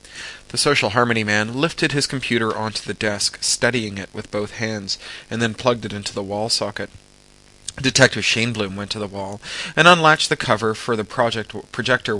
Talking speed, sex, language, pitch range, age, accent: 190 wpm, male, English, 100-125 Hz, 30-49, American